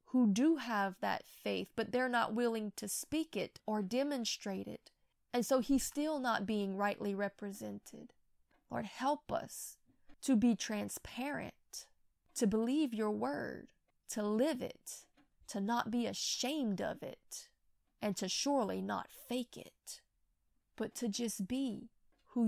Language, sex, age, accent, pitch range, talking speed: English, female, 20-39, American, 210-255 Hz, 140 wpm